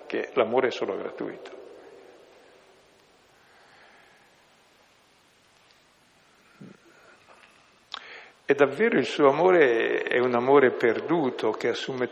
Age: 60-79